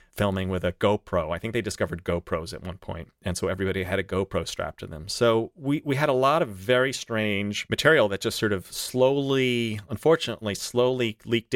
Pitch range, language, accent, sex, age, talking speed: 90-110 Hz, English, American, male, 30-49, 200 wpm